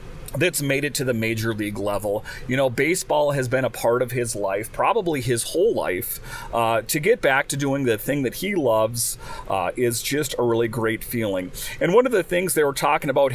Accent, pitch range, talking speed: American, 120-150 Hz, 220 wpm